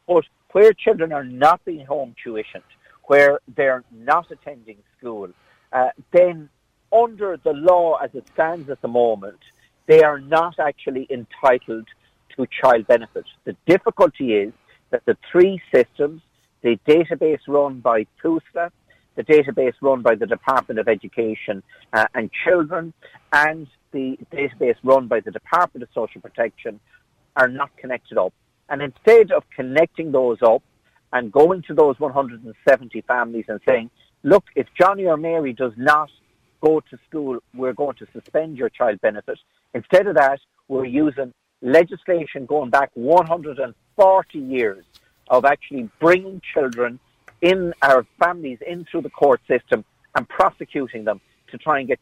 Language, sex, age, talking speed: English, male, 50-69, 145 wpm